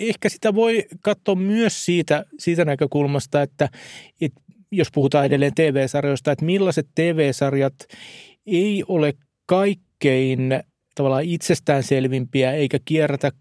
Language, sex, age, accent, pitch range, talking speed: Finnish, male, 30-49, native, 135-165 Hz, 105 wpm